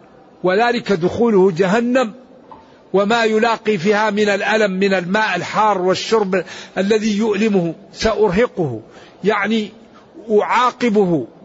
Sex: male